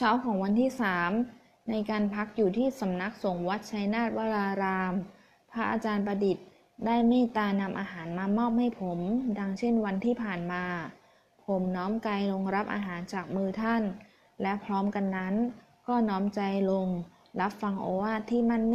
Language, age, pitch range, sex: Thai, 20-39, 190-230 Hz, female